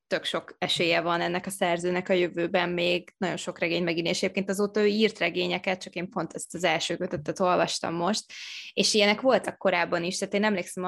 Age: 20-39